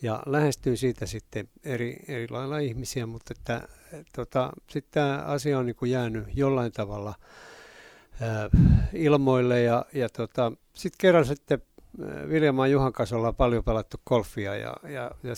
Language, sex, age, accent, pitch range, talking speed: Finnish, male, 60-79, native, 110-135 Hz, 145 wpm